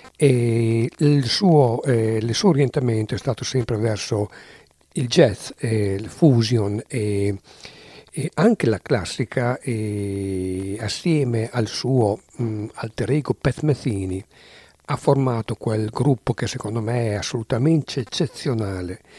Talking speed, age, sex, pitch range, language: 125 wpm, 60-79, male, 110-140 Hz, English